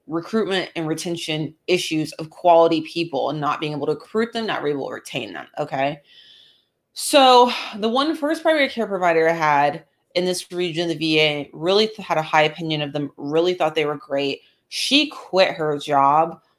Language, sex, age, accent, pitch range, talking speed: English, female, 30-49, American, 150-205 Hz, 190 wpm